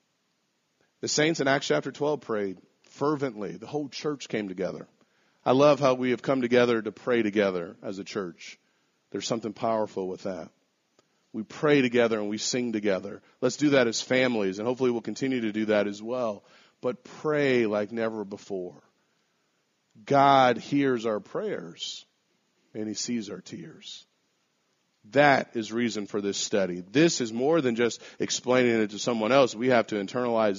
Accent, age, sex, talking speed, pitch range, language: American, 40-59, male, 170 wpm, 110-130 Hz, English